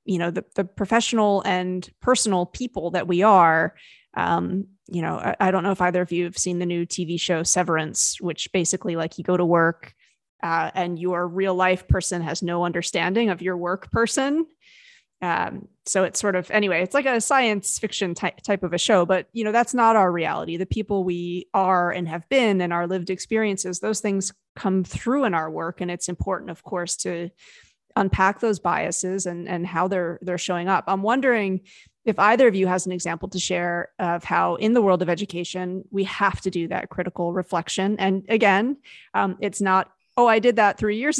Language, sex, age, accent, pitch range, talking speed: English, female, 30-49, American, 175-205 Hz, 205 wpm